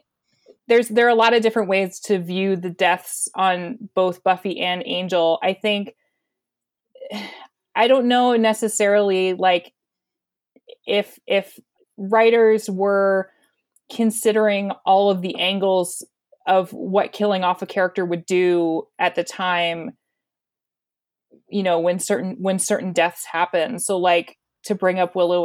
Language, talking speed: English, 135 wpm